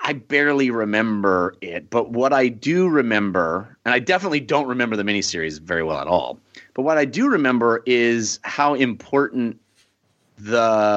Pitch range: 100-130 Hz